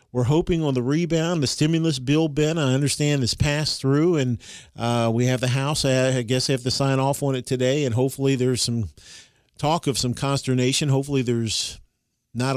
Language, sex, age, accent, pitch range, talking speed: English, male, 40-59, American, 120-135 Hz, 195 wpm